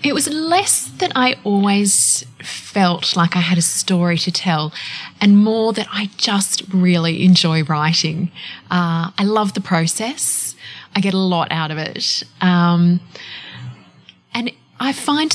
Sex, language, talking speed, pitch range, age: female, English, 150 wpm, 170-200 Hz, 20-39